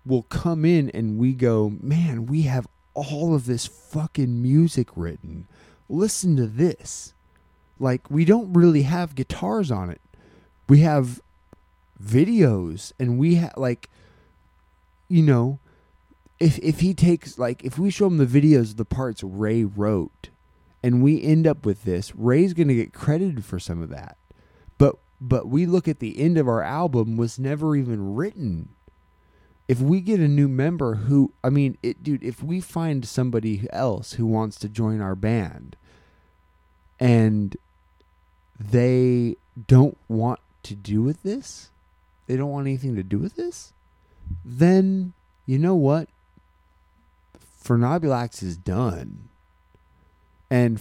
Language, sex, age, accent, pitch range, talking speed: English, male, 20-39, American, 90-145 Hz, 145 wpm